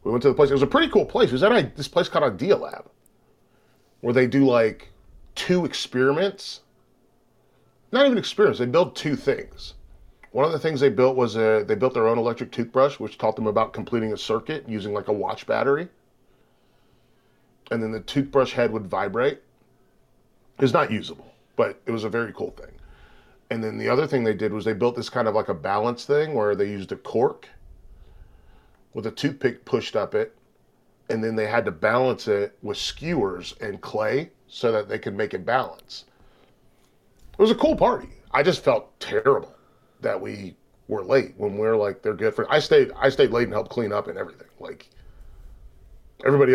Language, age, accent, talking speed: English, 30-49, American, 200 wpm